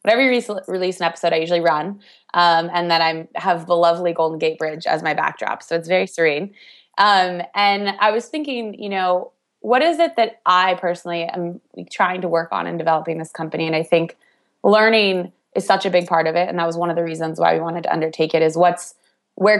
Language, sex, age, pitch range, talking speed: English, female, 20-39, 170-205 Hz, 225 wpm